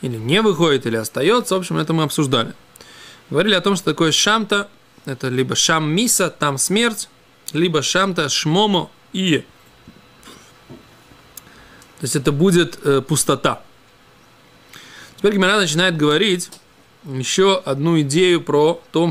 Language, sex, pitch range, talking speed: Russian, male, 145-190 Hz, 125 wpm